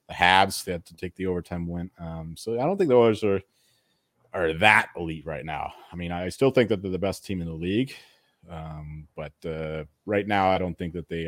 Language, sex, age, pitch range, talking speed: English, male, 30-49, 85-115 Hz, 240 wpm